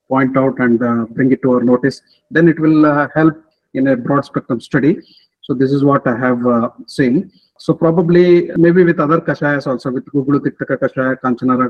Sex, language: male, English